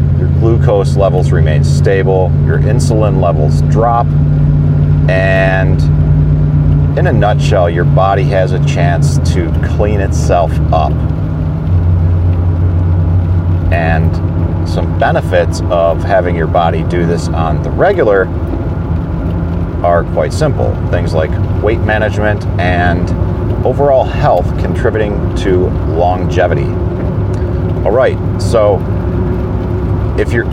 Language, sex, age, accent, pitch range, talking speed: English, male, 40-59, American, 85-95 Hz, 100 wpm